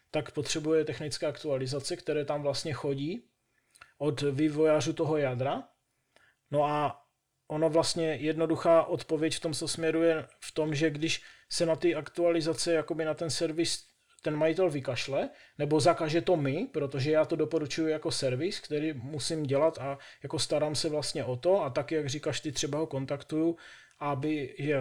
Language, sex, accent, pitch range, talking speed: Czech, male, native, 145-160 Hz, 160 wpm